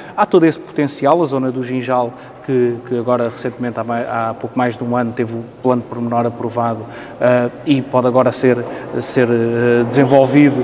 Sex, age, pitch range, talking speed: male, 20-39, 135-170 Hz, 185 wpm